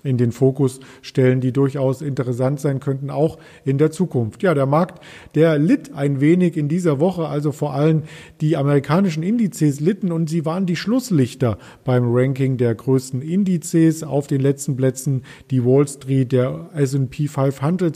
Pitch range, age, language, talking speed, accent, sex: 140-165 Hz, 50-69, German, 165 wpm, German, male